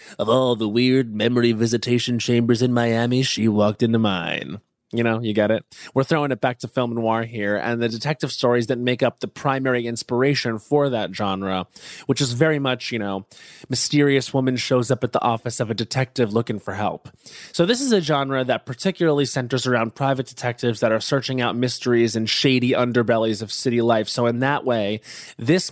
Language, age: English, 20-39